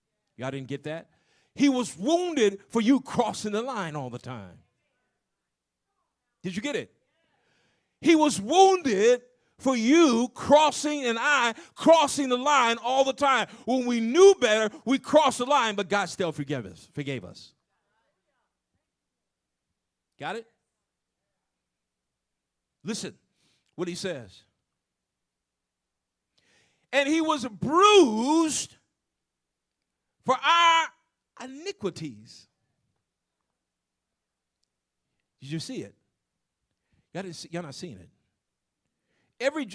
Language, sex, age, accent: English, male, 40-59, American